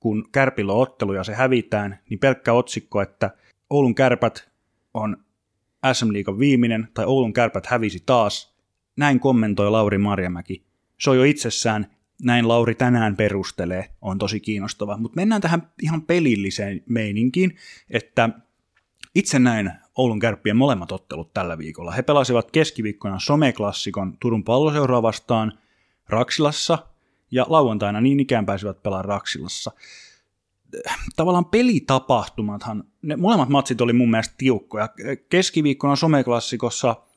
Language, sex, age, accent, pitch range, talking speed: Finnish, male, 30-49, native, 105-130 Hz, 120 wpm